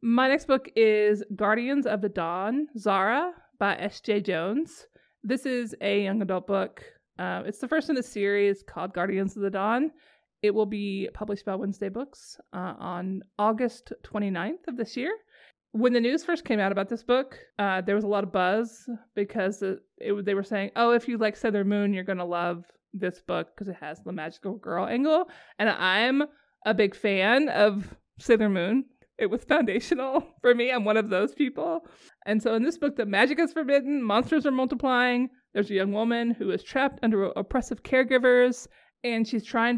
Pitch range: 200-250 Hz